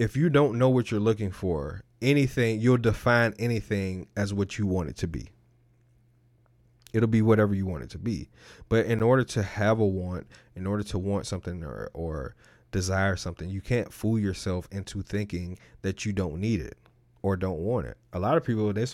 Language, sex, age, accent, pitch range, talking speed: English, male, 30-49, American, 100-120 Hz, 205 wpm